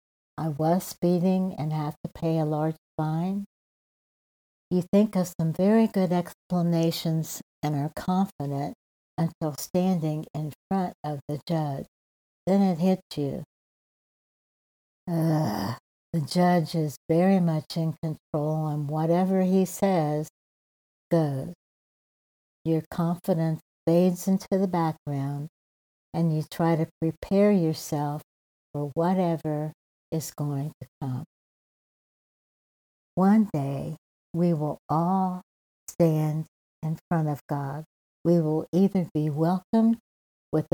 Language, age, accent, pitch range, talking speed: English, 60-79, American, 150-180 Hz, 115 wpm